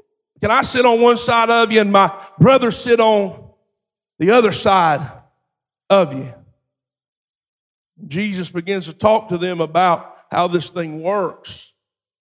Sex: male